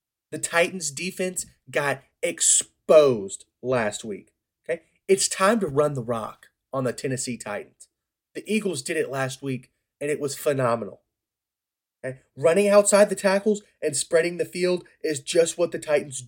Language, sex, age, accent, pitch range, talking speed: English, male, 30-49, American, 125-165 Hz, 155 wpm